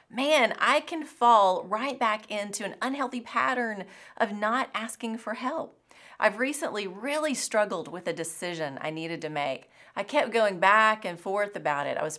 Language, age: English, 30-49